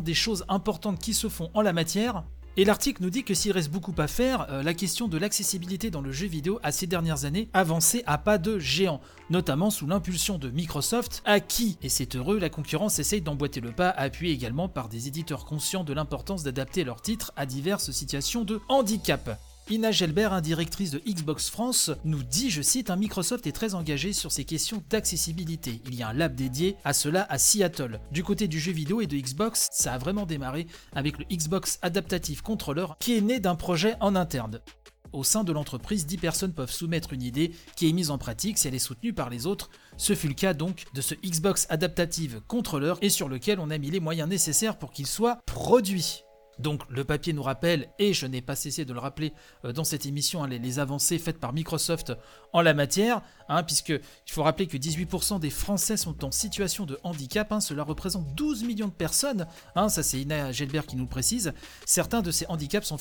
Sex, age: male, 30-49